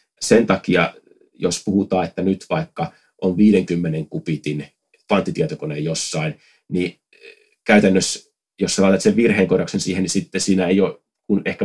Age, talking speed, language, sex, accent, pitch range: 30-49, 135 wpm, Finnish, male, native, 85-130 Hz